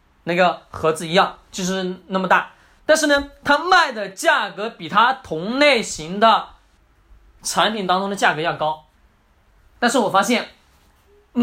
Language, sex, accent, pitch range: Chinese, male, native, 185-285 Hz